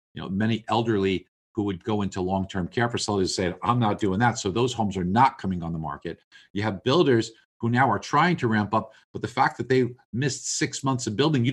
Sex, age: male, 50-69